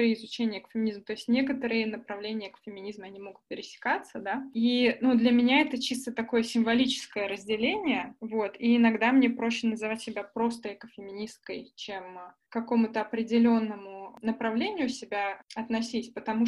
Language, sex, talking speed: Russian, female, 135 wpm